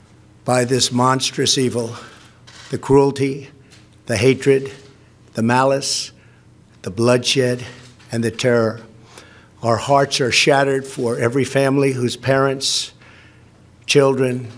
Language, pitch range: English, 115-140 Hz